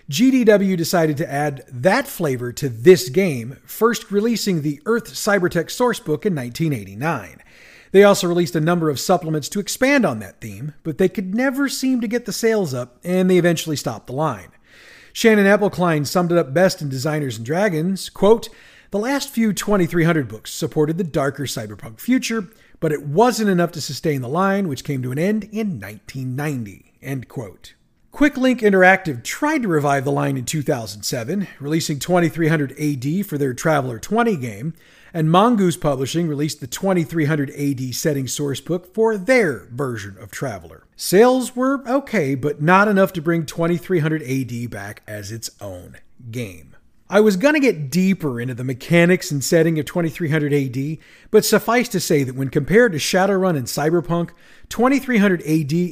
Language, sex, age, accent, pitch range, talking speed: English, male, 40-59, American, 140-200 Hz, 165 wpm